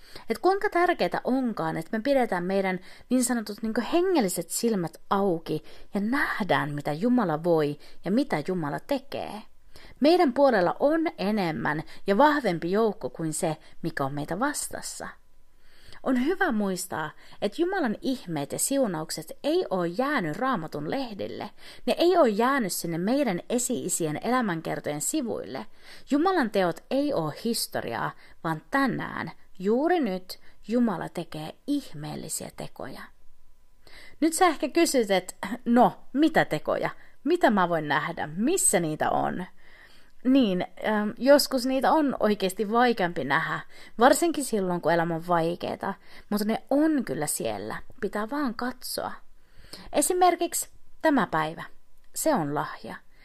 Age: 30-49